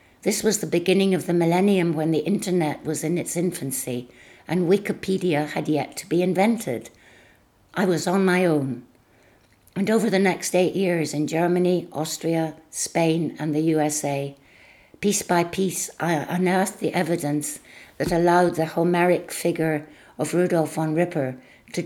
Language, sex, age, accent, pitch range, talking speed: English, female, 60-79, British, 140-175 Hz, 155 wpm